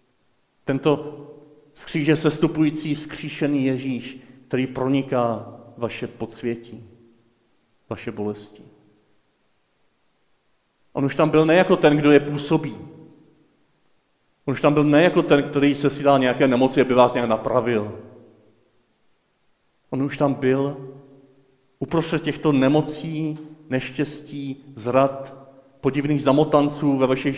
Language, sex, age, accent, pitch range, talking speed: Czech, male, 40-59, native, 120-145 Hz, 110 wpm